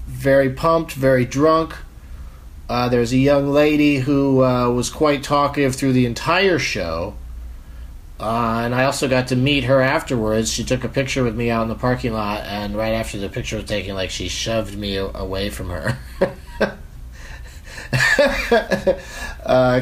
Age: 40-59